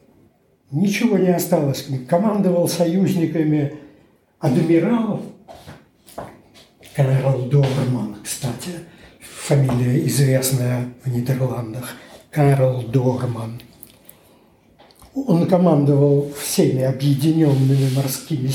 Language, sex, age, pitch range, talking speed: Russian, male, 60-79, 135-180 Hz, 65 wpm